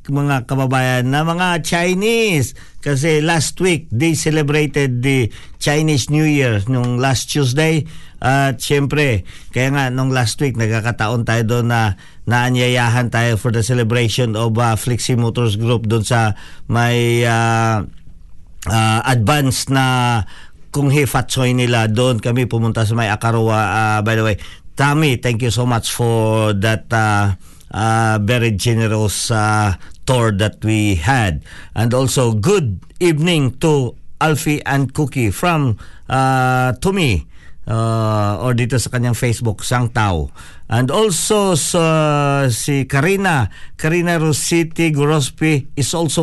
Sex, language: male, Filipino